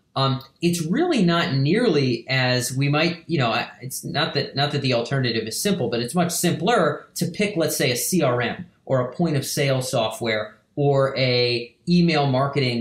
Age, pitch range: 30-49, 135-175 Hz